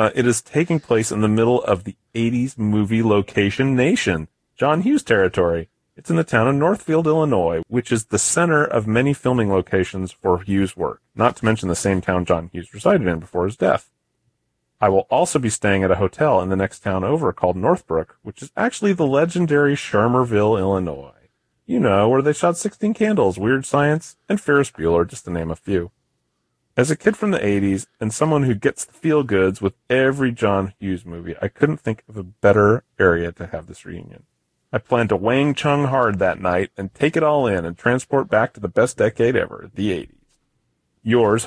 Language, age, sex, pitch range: English, 30-49, male, 95-140 Hz